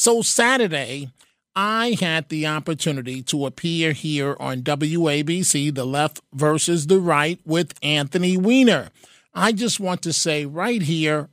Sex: male